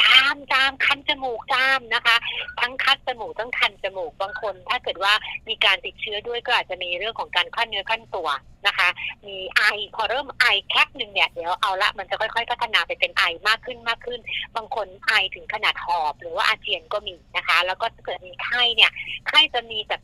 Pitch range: 195-250 Hz